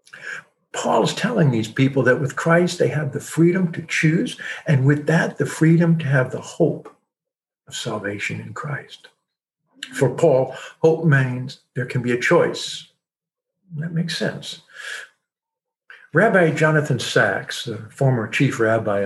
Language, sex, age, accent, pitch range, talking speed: English, male, 60-79, American, 130-170 Hz, 145 wpm